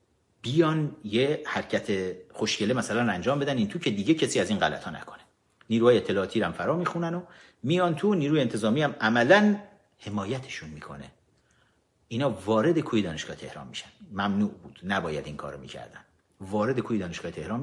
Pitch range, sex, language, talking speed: 110-175 Hz, male, Persian, 160 wpm